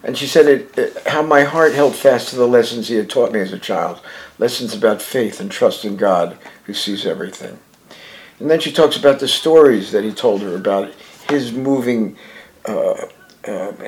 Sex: male